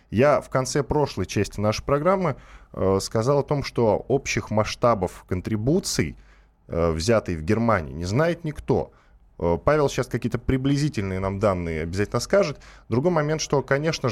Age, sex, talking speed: 10-29, male, 150 wpm